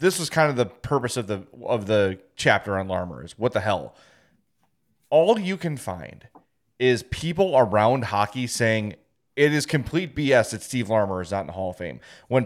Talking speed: 195 wpm